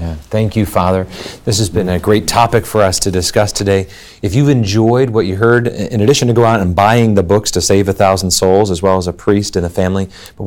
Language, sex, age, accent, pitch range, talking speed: English, male, 40-59, American, 90-110 Hz, 250 wpm